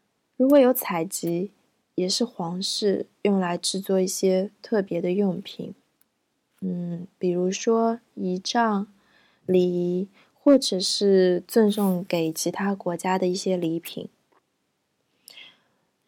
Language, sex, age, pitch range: Chinese, female, 20-39, 180-230 Hz